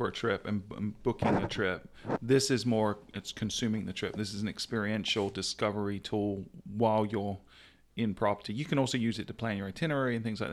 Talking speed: 205 wpm